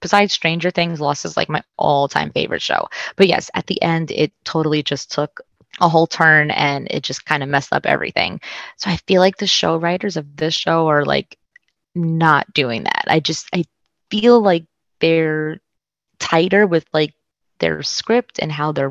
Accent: American